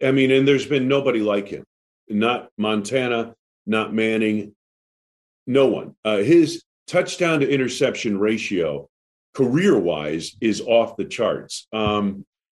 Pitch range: 105-145 Hz